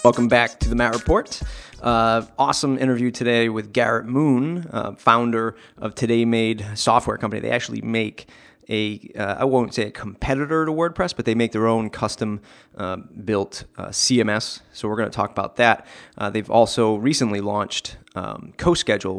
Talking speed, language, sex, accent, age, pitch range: 170 wpm, English, male, American, 30-49, 110-120 Hz